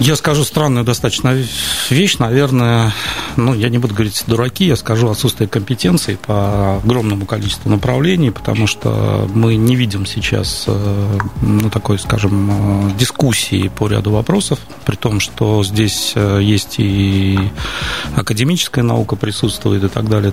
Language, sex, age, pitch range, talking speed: Russian, male, 30-49, 100-120 Hz, 135 wpm